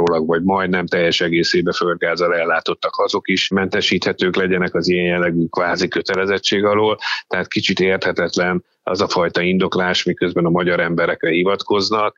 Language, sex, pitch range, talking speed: Hungarian, male, 85-95 Hz, 140 wpm